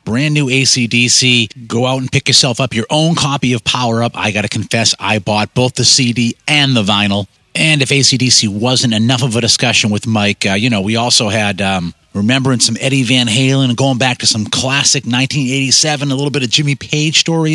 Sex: male